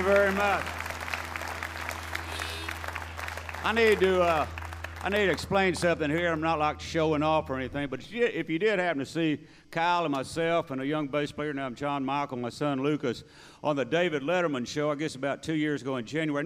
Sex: male